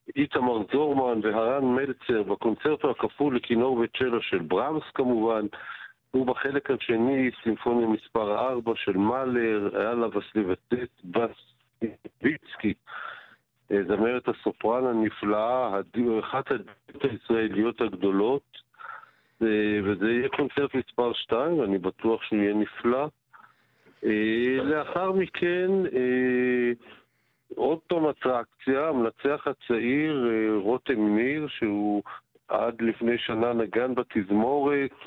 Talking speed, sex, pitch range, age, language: 90 wpm, male, 110-135 Hz, 50-69, Hebrew